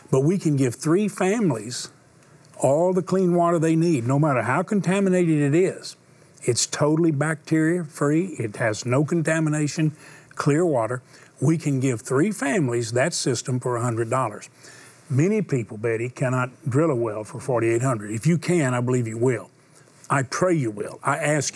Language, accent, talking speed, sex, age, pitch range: English, American, 160 wpm, male, 50-69, 125-160 Hz